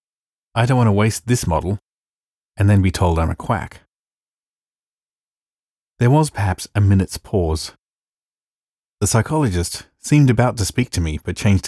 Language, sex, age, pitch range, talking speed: English, male, 30-49, 90-115 Hz, 155 wpm